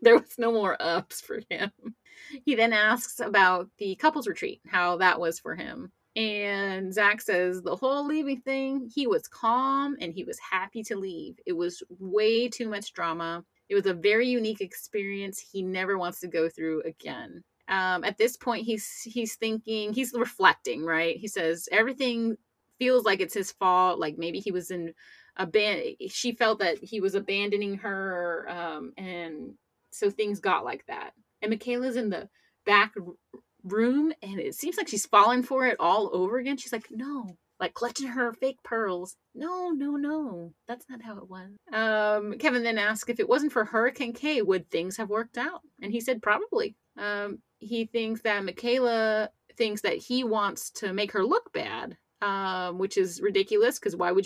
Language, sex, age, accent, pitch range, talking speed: English, female, 30-49, American, 195-250 Hz, 185 wpm